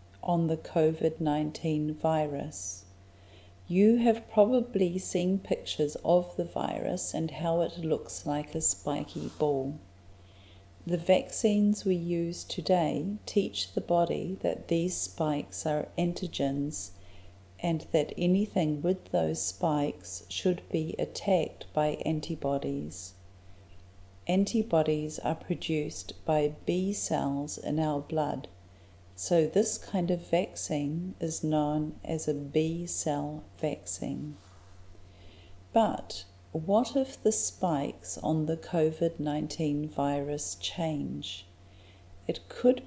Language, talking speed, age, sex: English, 105 wpm, 40-59, female